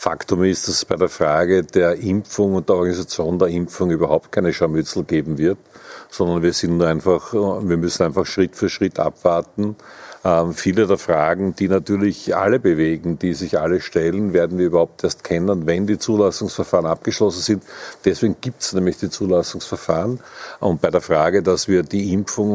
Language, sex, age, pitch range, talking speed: German, male, 50-69, 85-100 Hz, 175 wpm